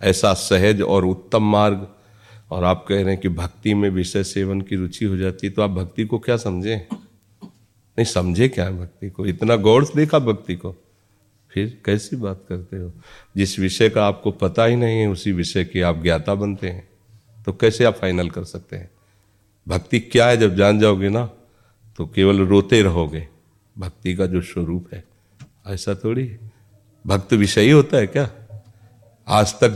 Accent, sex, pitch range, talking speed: native, male, 95-110 Hz, 180 wpm